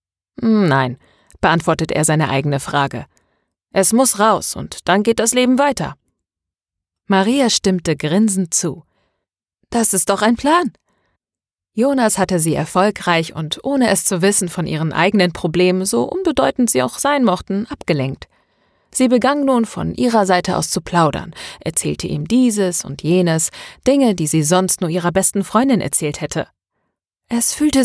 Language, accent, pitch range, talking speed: German, German, 155-215 Hz, 150 wpm